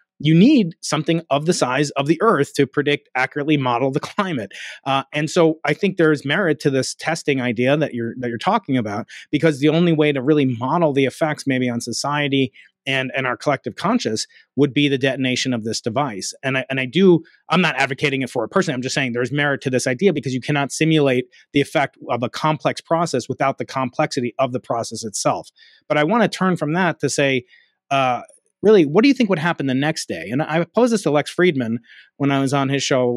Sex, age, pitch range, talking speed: male, 30-49, 125-155 Hz, 230 wpm